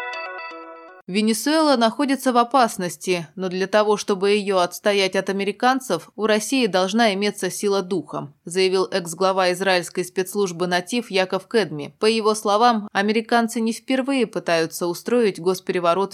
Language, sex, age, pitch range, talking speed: Russian, female, 20-39, 170-215 Hz, 125 wpm